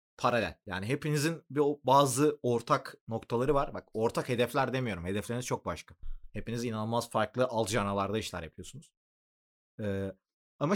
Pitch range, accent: 100-150 Hz, native